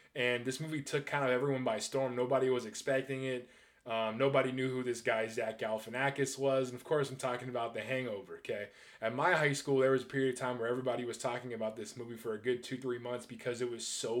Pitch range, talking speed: 125-145 Hz, 245 wpm